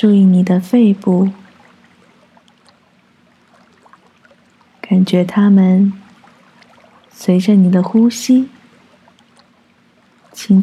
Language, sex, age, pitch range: Chinese, female, 20-39, 190-230 Hz